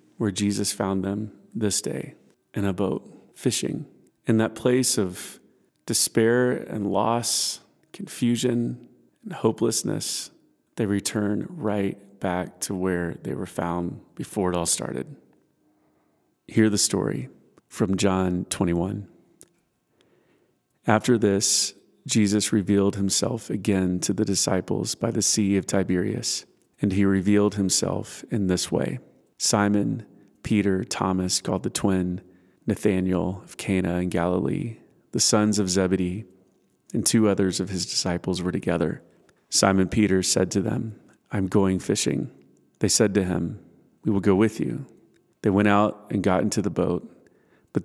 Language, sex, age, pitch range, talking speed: English, male, 30-49, 95-105 Hz, 135 wpm